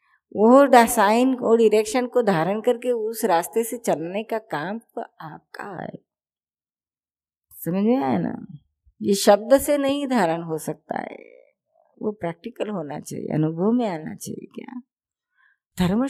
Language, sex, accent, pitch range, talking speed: Hindi, female, native, 165-230 Hz, 125 wpm